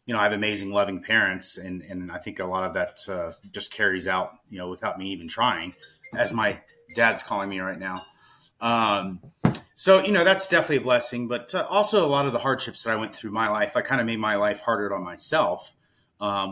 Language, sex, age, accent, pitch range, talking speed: English, male, 30-49, American, 95-125 Hz, 235 wpm